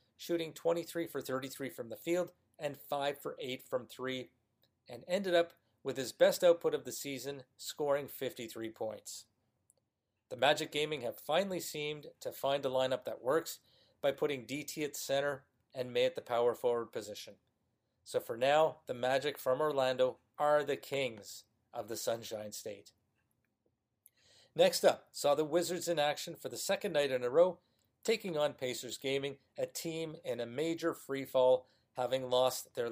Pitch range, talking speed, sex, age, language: 125-155 Hz, 165 wpm, male, 40-59, English